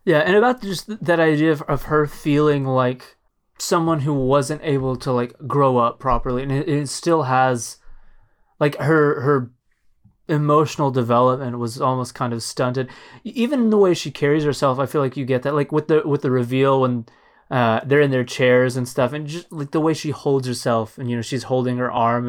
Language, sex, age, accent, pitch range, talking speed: English, male, 20-39, American, 120-150 Hz, 205 wpm